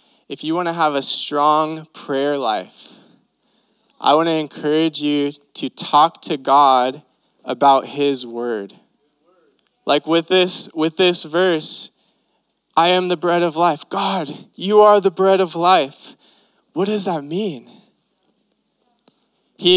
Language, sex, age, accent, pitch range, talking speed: English, male, 20-39, American, 145-195 Hz, 130 wpm